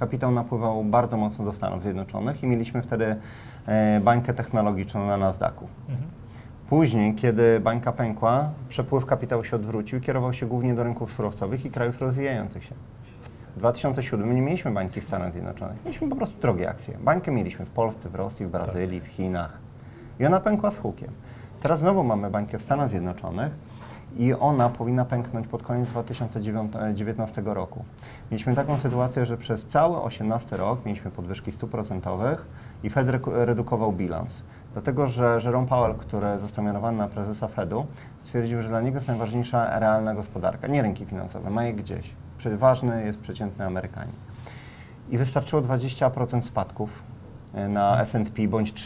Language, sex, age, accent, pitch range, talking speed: Polish, male, 30-49, native, 105-125 Hz, 155 wpm